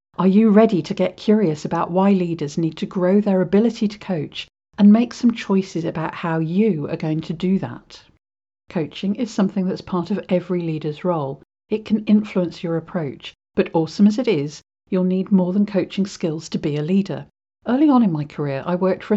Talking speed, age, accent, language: 205 wpm, 50-69, British, English